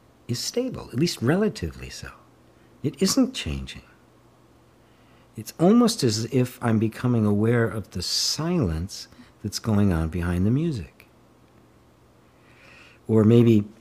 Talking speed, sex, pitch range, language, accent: 115 wpm, male, 95-125 Hz, English, American